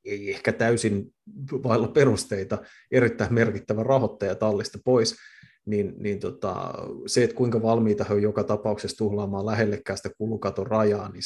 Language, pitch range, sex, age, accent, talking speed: Finnish, 105-115 Hz, male, 20-39, native, 140 wpm